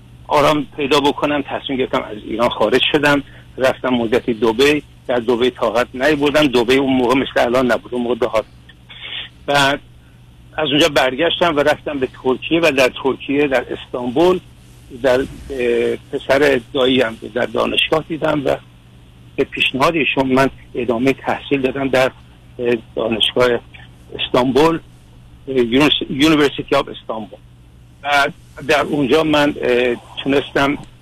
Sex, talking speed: male, 120 wpm